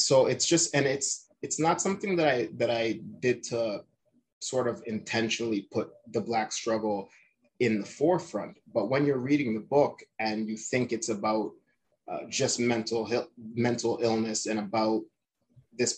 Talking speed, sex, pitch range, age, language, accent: 160 wpm, male, 110-125 Hz, 30-49, English, American